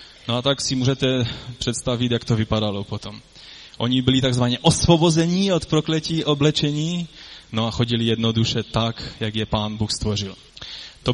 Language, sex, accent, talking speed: Czech, male, native, 150 wpm